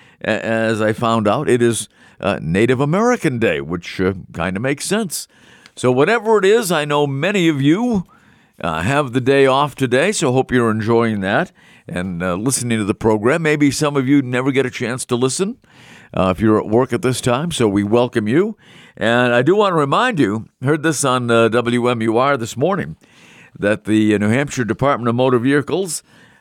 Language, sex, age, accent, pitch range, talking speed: English, male, 50-69, American, 105-150 Hz, 180 wpm